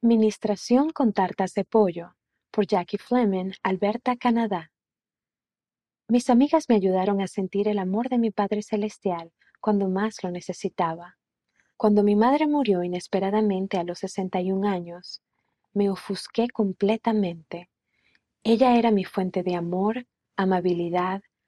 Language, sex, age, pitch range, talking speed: Spanish, female, 30-49, 185-220 Hz, 130 wpm